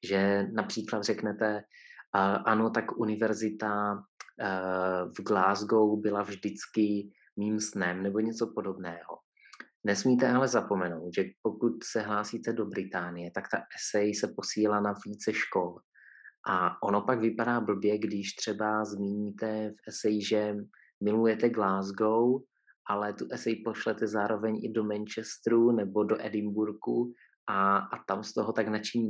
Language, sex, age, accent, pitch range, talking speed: Czech, male, 30-49, native, 100-110 Hz, 130 wpm